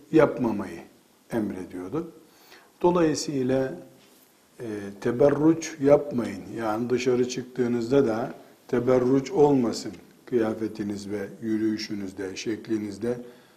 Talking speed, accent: 70 wpm, native